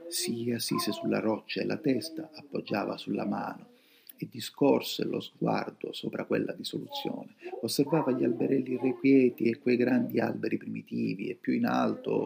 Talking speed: 150 wpm